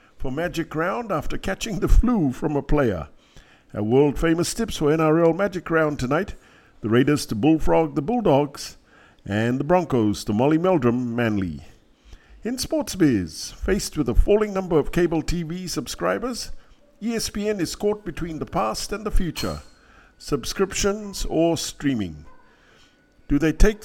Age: 50-69